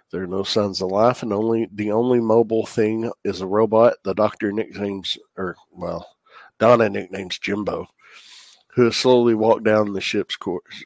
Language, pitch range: English, 95-110 Hz